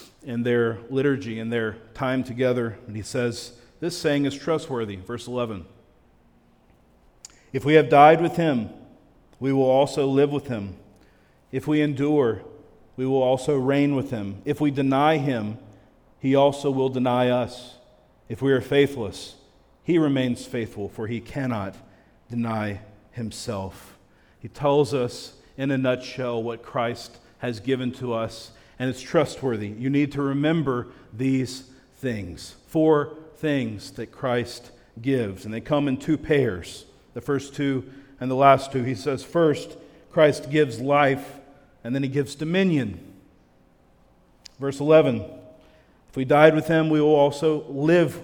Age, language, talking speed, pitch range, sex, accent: 40-59, English, 150 wpm, 115-140 Hz, male, American